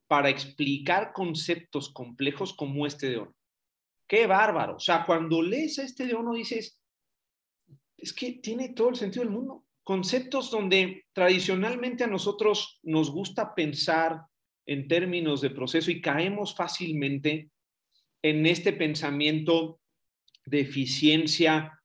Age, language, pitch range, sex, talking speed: 40-59, Spanish, 145-185 Hz, male, 130 wpm